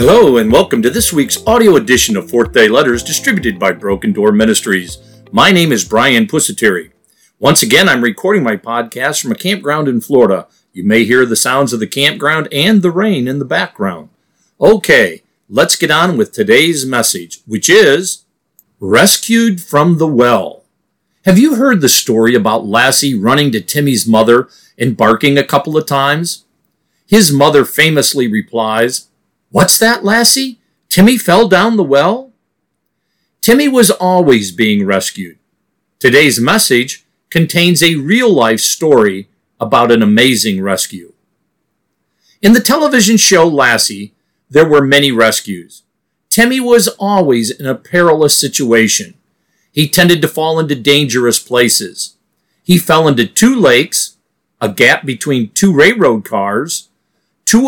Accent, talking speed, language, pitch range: American, 145 wpm, English, 120-195 Hz